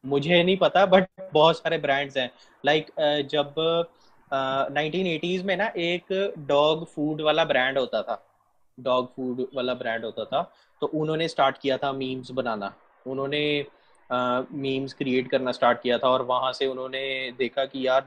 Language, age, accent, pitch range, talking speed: Hindi, 20-39, native, 130-160 Hz, 125 wpm